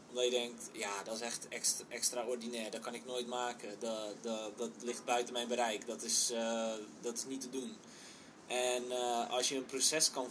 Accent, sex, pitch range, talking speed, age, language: Dutch, male, 120-135 Hz, 210 wpm, 20-39, Dutch